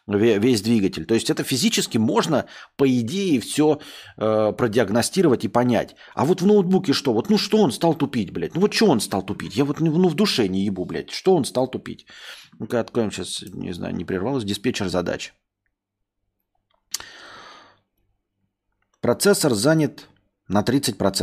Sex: male